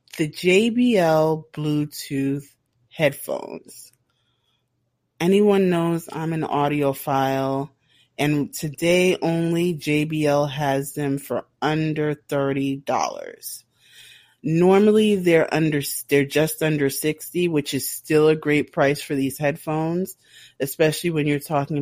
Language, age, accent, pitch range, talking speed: English, 30-49, American, 135-165 Hz, 105 wpm